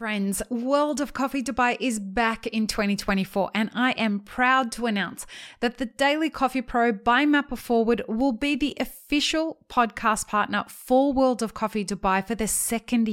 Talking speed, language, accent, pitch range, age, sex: 170 wpm, English, Australian, 210-255 Hz, 20-39, female